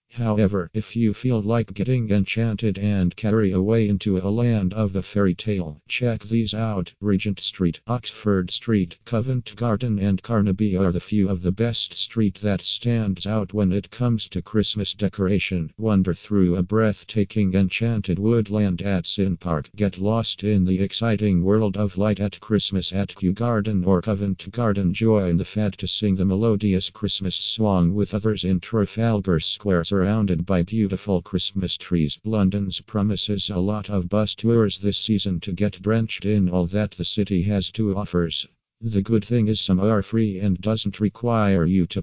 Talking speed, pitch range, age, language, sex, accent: 170 wpm, 95-110 Hz, 50-69, English, male, American